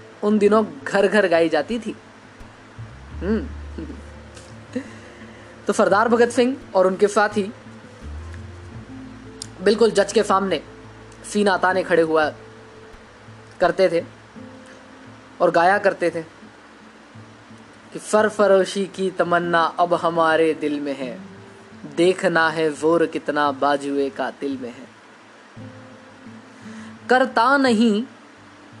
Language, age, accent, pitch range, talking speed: Hindi, 20-39, native, 115-180 Hz, 95 wpm